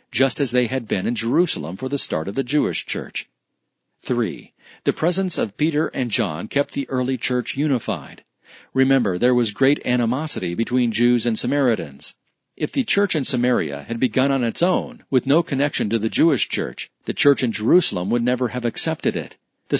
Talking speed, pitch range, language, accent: 190 wpm, 120-145 Hz, English, American